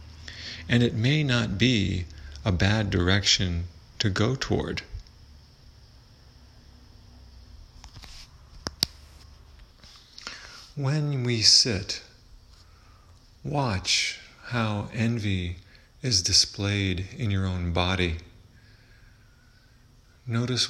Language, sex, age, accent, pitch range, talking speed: English, male, 40-59, American, 90-110 Hz, 70 wpm